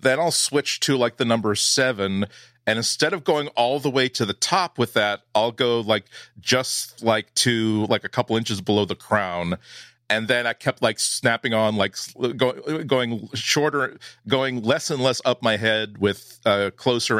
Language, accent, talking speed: English, American, 190 wpm